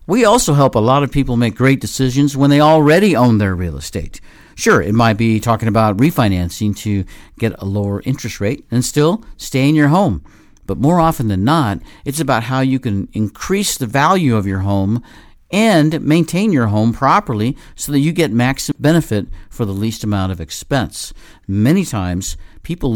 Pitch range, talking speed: 105-140 Hz, 190 wpm